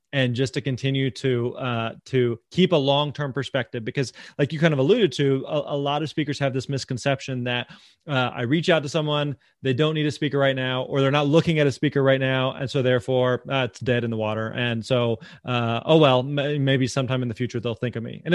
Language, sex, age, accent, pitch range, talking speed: English, male, 30-49, American, 130-150 Hz, 240 wpm